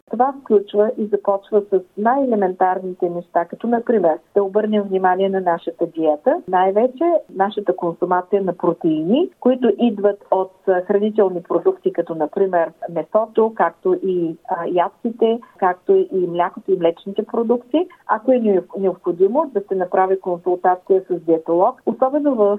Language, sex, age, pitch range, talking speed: Bulgarian, female, 40-59, 175-215 Hz, 130 wpm